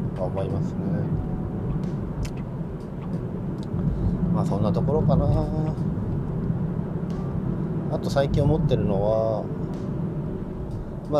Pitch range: 110-145 Hz